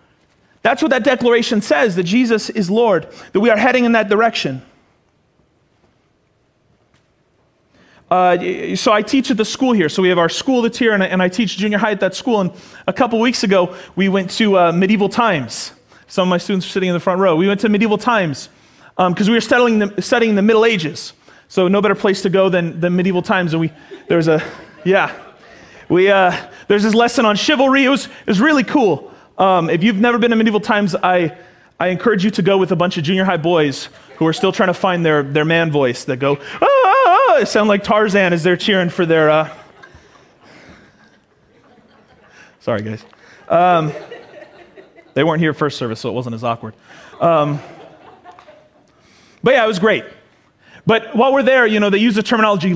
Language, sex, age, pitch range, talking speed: English, male, 30-49, 170-220 Hz, 200 wpm